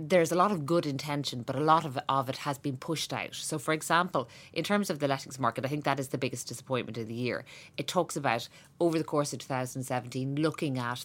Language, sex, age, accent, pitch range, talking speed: English, female, 30-49, Irish, 130-160 Hz, 265 wpm